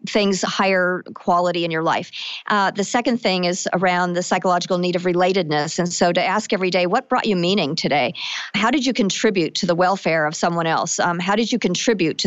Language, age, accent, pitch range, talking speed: English, 50-69, American, 175-210 Hz, 215 wpm